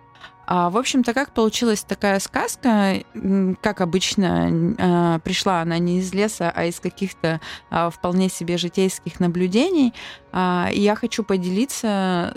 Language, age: Russian, 20-39